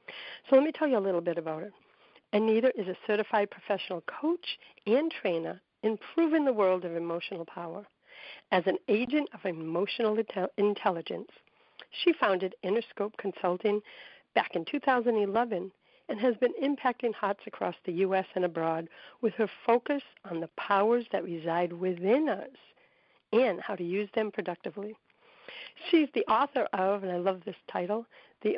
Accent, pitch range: American, 180-245 Hz